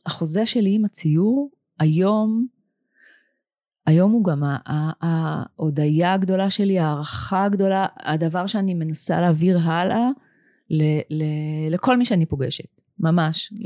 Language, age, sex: Hebrew, 30-49, female